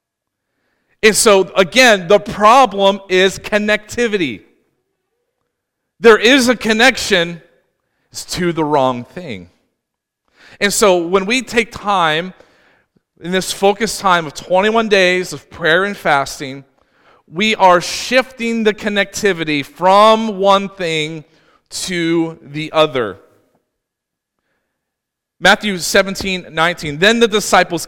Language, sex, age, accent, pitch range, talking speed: English, male, 40-59, American, 180-225 Hz, 105 wpm